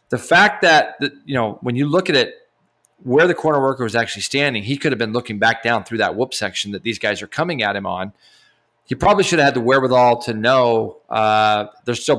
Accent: American